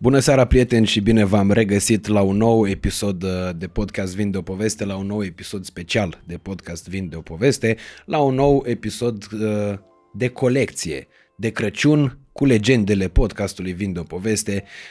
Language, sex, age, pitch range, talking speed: Romanian, male, 20-39, 90-115 Hz, 160 wpm